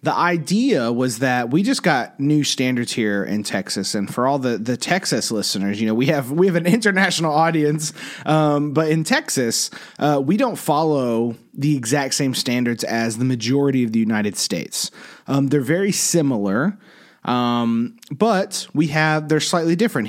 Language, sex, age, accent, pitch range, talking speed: English, male, 30-49, American, 120-155 Hz, 175 wpm